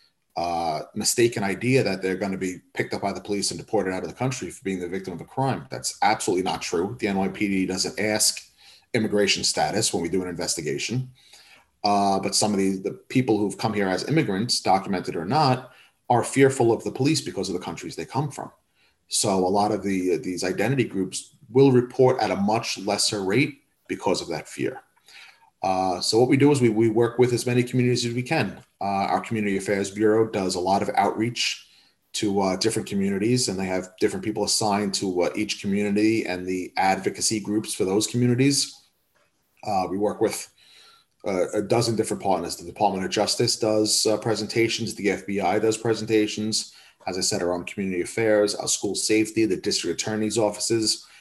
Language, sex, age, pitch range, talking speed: English, male, 30-49, 95-115 Hz, 195 wpm